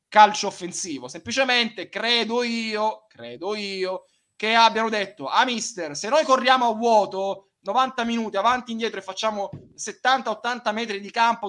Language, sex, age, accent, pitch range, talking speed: Italian, male, 20-39, native, 200-260 Hz, 155 wpm